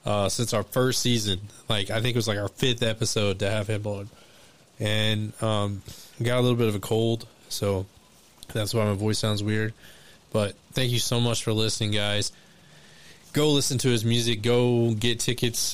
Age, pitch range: 20-39, 100-115 Hz